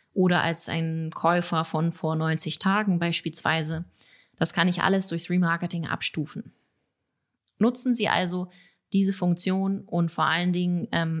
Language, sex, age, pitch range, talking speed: German, female, 30-49, 165-195 Hz, 140 wpm